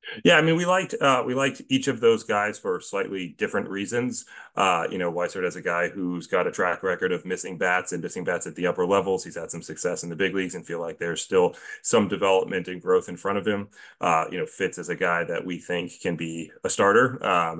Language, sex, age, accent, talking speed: English, male, 30-49, American, 250 wpm